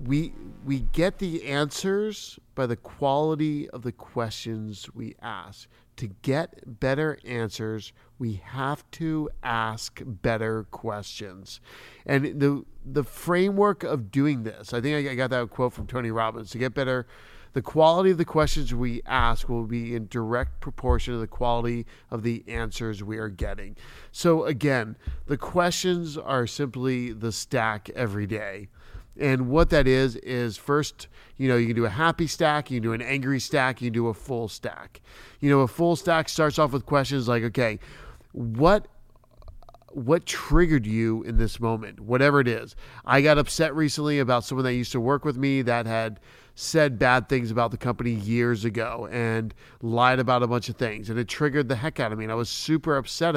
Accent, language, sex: American, English, male